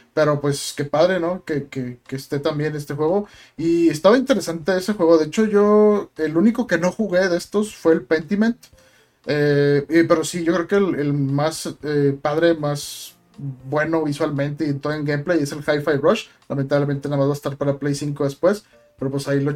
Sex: male